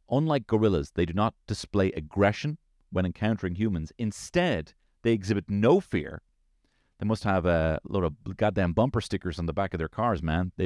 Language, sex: English, male